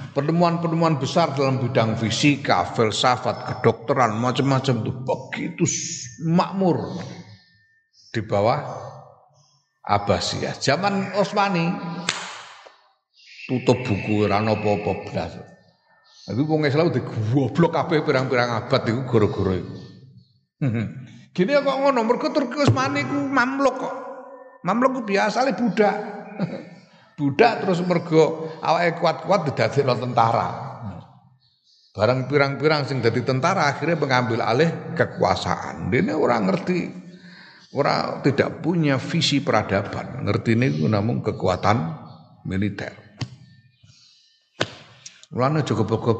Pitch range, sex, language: 115-170 Hz, male, Indonesian